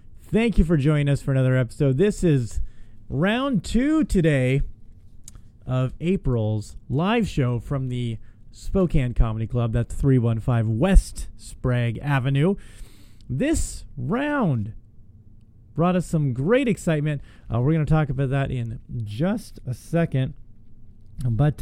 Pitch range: 115-160 Hz